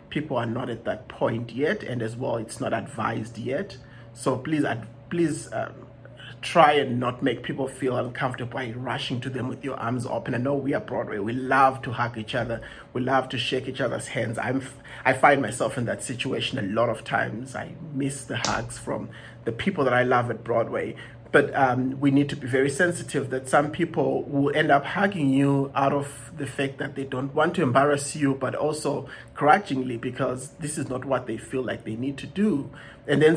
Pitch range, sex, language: 125-145 Hz, male, English